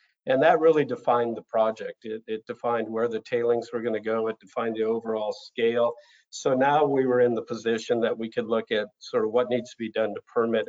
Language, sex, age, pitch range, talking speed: English, male, 50-69, 110-130 Hz, 235 wpm